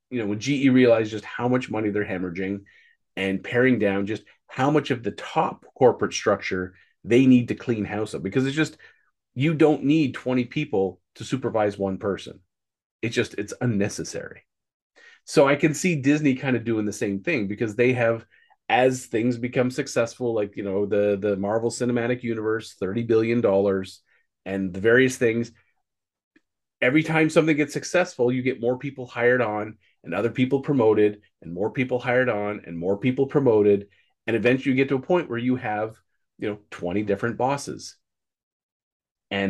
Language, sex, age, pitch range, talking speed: English, male, 40-59, 100-130 Hz, 175 wpm